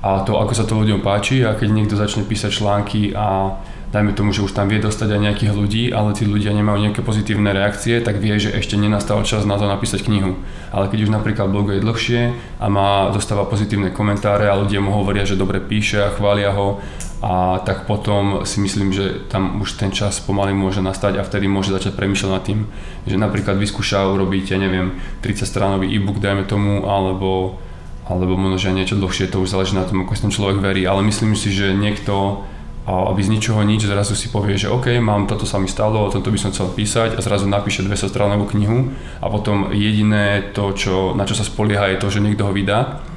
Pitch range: 95-105 Hz